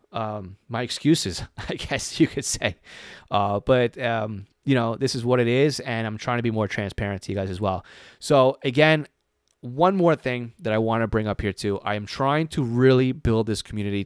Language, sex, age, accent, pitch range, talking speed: English, male, 30-49, American, 100-125 Hz, 220 wpm